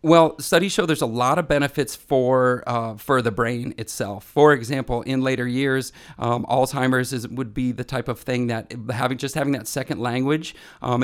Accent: American